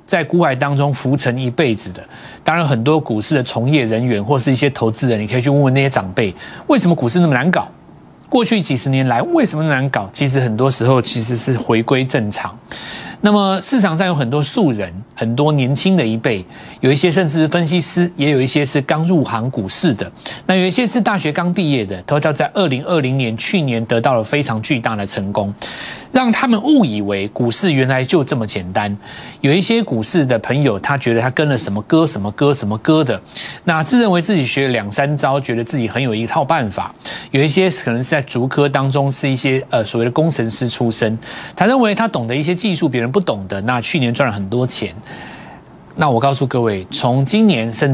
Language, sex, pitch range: Chinese, male, 115-160 Hz